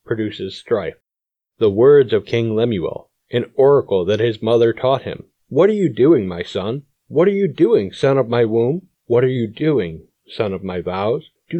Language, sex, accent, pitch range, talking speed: English, male, American, 120-170 Hz, 190 wpm